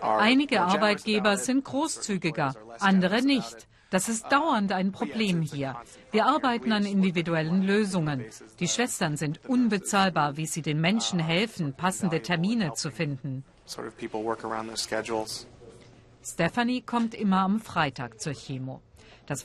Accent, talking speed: German, 115 wpm